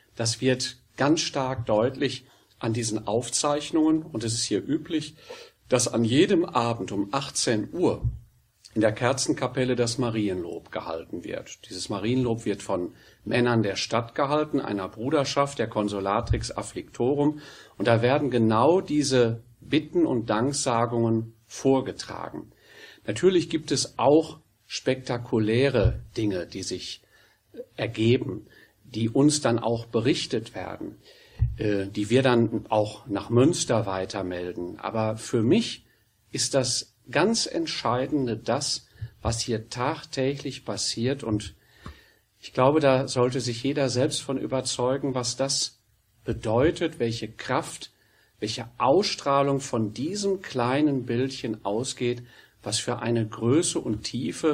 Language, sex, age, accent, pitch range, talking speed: German, male, 40-59, German, 110-135 Hz, 120 wpm